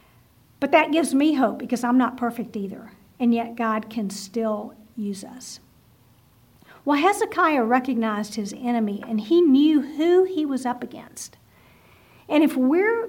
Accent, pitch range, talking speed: American, 225-280 Hz, 150 wpm